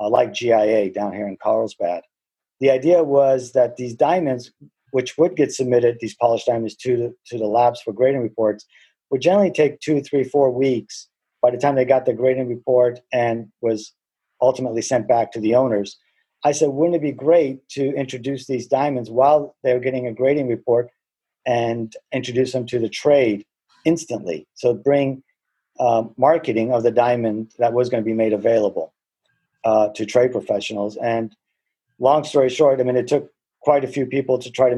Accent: American